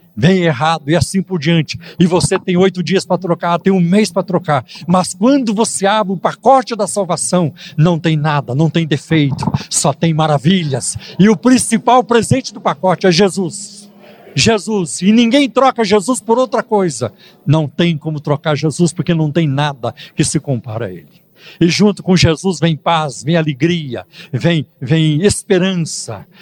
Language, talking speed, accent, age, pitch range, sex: Portuguese, 175 wpm, Brazilian, 60-79, 145-190 Hz, male